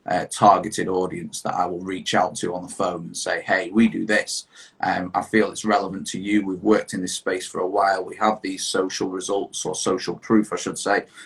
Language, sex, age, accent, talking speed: English, male, 30-49, British, 240 wpm